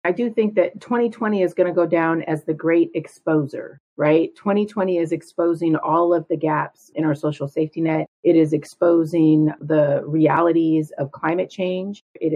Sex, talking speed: female, 175 wpm